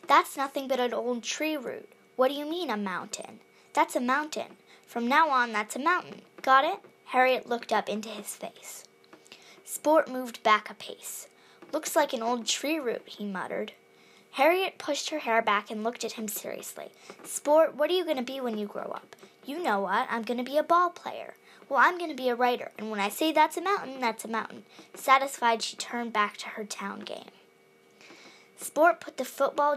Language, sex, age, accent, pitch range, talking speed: English, female, 10-29, American, 220-285 Hz, 210 wpm